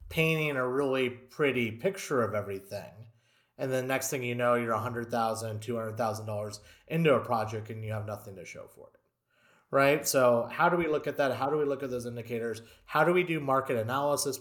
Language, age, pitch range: English, 30-49, 115-140 Hz